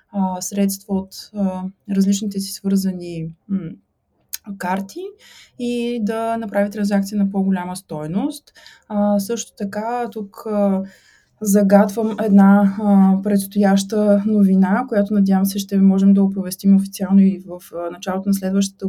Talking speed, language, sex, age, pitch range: 105 wpm, Bulgarian, female, 20-39, 190-210 Hz